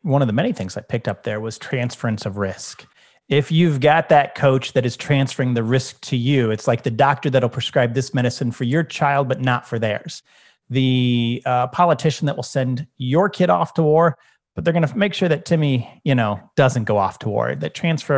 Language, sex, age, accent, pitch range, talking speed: English, male, 30-49, American, 125-155 Hz, 225 wpm